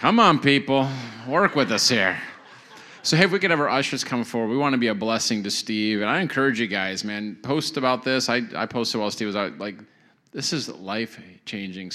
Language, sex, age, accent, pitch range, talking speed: English, male, 30-49, American, 110-140 Hz, 225 wpm